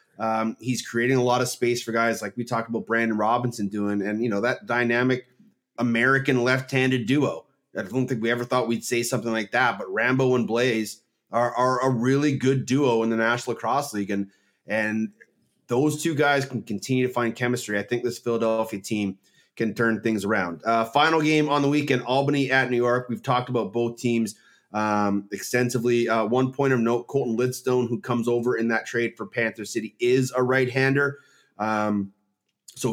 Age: 30-49